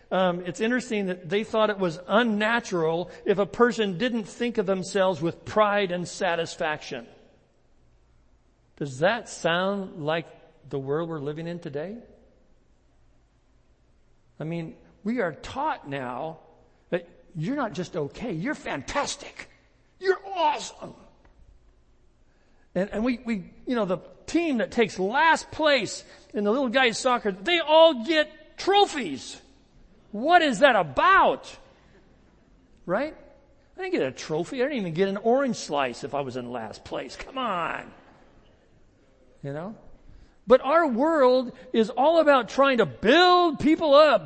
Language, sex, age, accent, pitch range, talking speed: English, male, 60-79, American, 165-260 Hz, 140 wpm